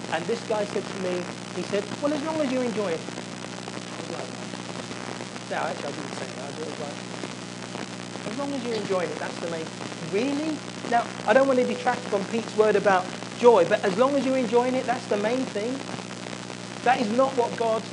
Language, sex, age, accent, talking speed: English, male, 40-59, British, 205 wpm